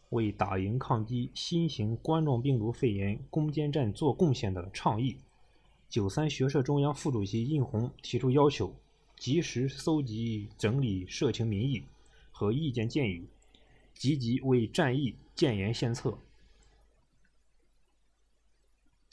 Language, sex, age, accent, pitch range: Chinese, male, 20-39, native, 105-145 Hz